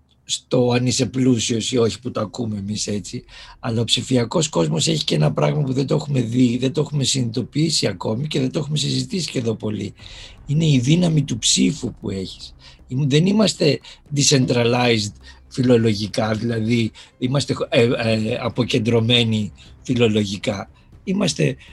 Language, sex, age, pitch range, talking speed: Greek, male, 50-69, 110-140 Hz, 145 wpm